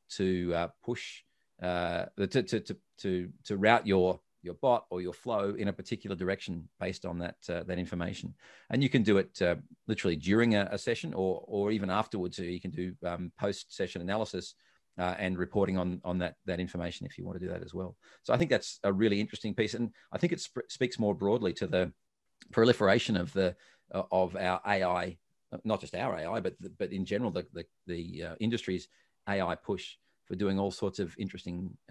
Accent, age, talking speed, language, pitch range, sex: Australian, 40-59, 210 wpm, English, 90-100 Hz, male